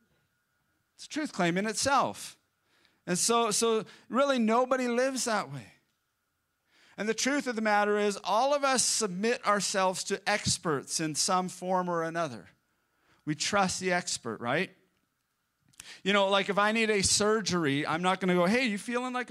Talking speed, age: 170 wpm, 40-59